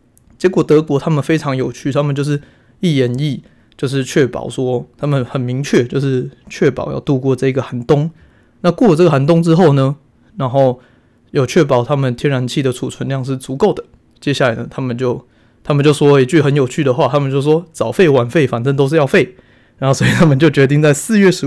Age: 20-39